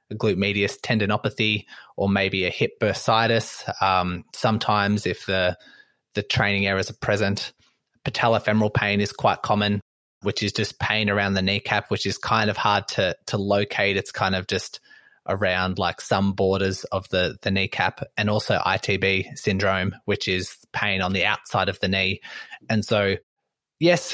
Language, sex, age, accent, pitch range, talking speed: English, male, 20-39, Australian, 100-115 Hz, 160 wpm